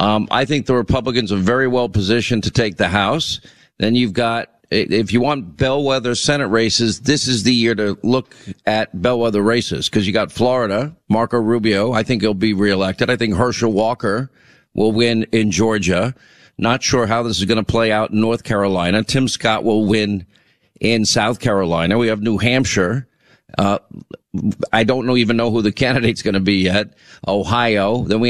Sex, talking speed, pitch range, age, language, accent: male, 185 wpm, 100-120 Hz, 50-69, English, American